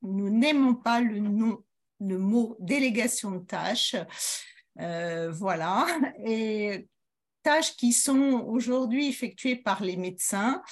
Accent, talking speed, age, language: French, 120 wpm, 50-69, French